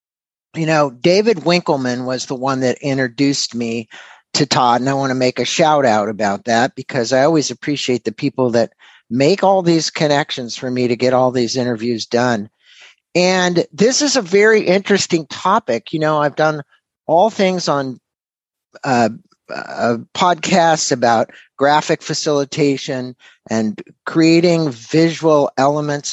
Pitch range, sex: 125-170 Hz, male